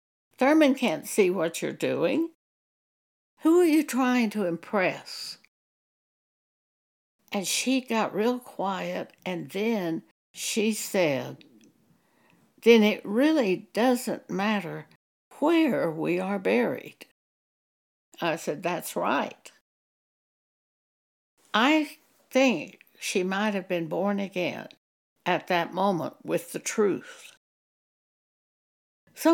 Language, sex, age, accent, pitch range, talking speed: English, female, 60-79, American, 175-245 Hz, 100 wpm